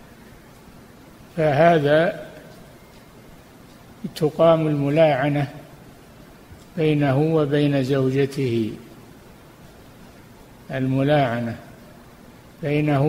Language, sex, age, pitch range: Arabic, male, 60-79, 135-155 Hz